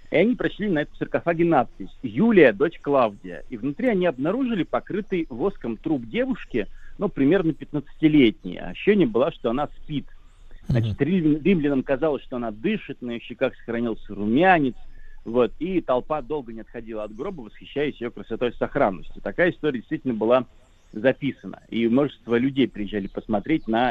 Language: Russian